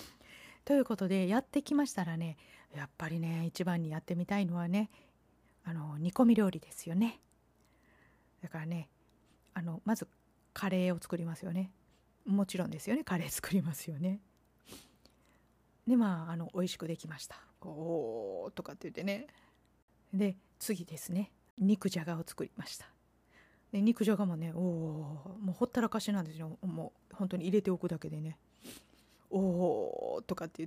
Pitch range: 165-205 Hz